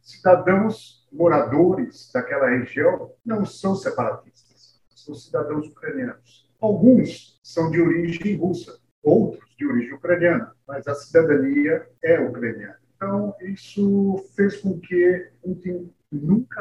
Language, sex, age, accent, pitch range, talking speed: Portuguese, male, 50-69, Brazilian, 155-215 Hz, 110 wpm